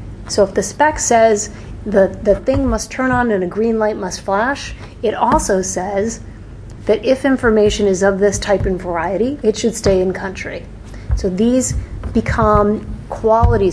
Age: 30-49